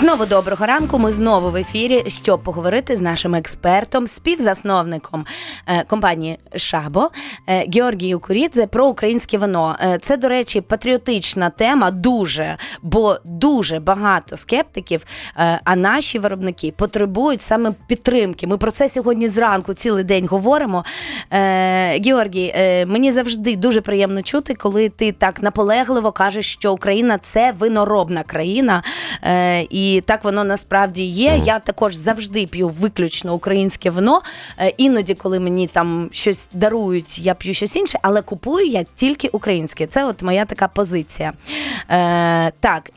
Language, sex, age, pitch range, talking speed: Ukrainian, female, 20-39, 185-235 Hz, 130 wpm